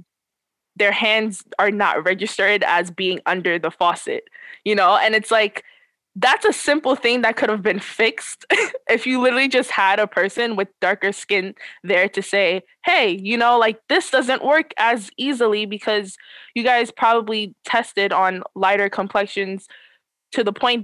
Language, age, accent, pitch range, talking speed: English, 20-39, American, 185-230 Hz, 165 wpm